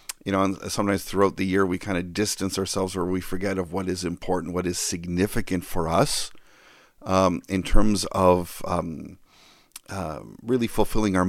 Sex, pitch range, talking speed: male, 95-105 Hz, 175 wpm